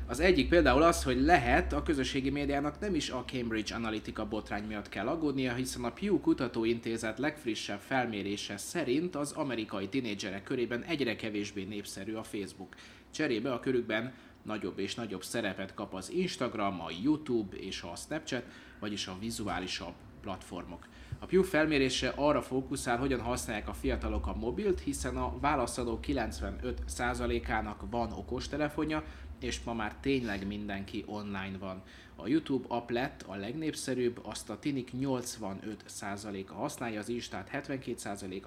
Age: 30-49